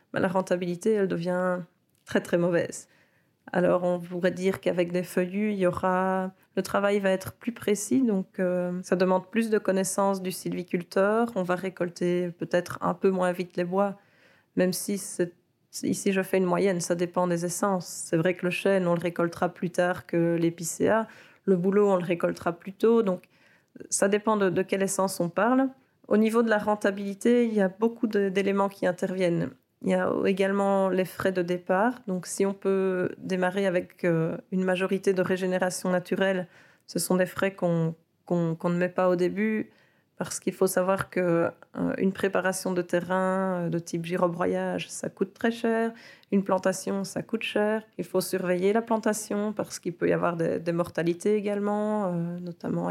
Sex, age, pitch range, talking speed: female, 30-49, 180-200 Hz, 180 wpm